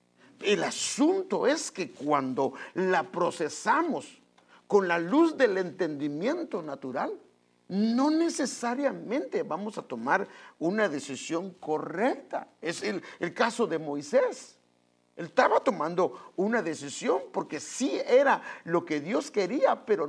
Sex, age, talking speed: male, 50-69, 120 wpm